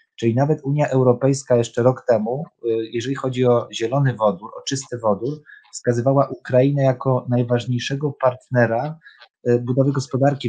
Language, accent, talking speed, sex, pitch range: Polish, native, 125 wpm, male, 115-130 Hz